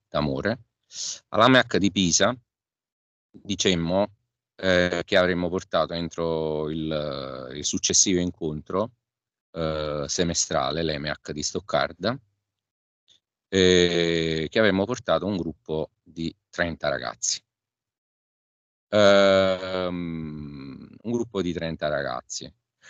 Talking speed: 90 wpm